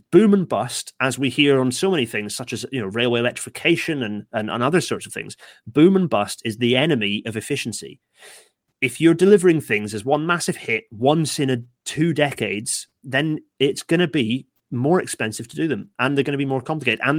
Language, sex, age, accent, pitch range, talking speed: English, male, 30-49, British, 110-135 Hz, 205 wpm